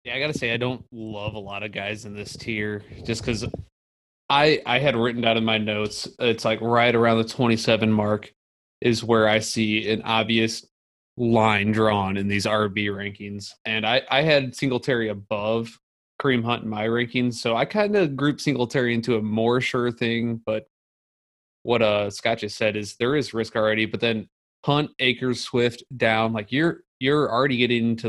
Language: English